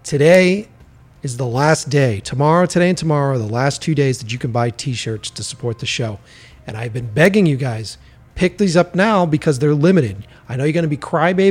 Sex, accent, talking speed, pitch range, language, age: male, American, 220 wpm, 120-155 Hz, English, 40-59